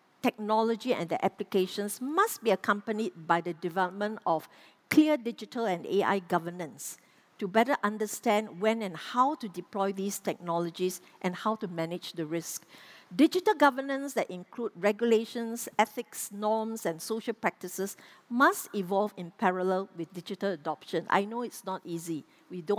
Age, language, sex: 50-69, English, female